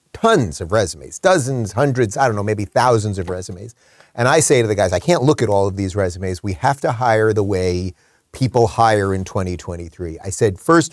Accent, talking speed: American, 215 wpm